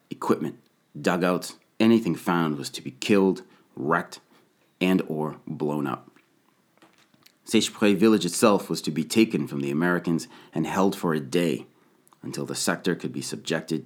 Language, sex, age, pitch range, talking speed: English, male, 30-49, 80-100 Hz, 145 wpm